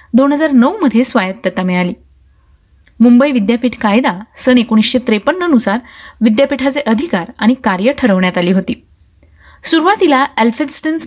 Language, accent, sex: Marathi, native, female